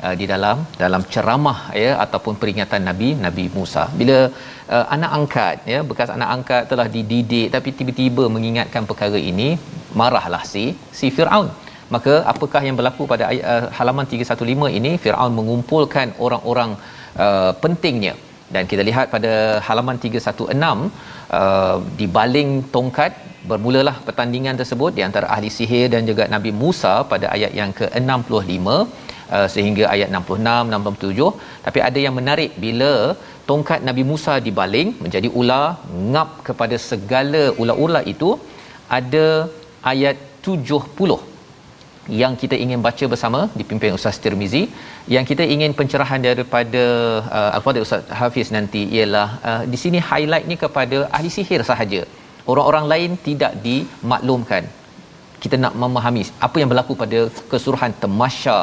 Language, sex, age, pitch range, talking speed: Malayalam, male, 40-59, 110-140 Hz, 135 wpm